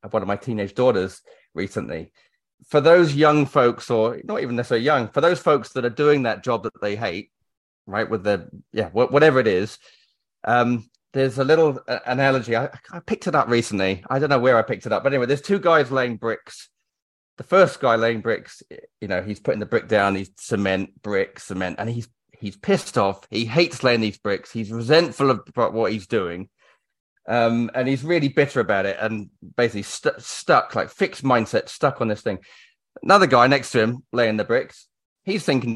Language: English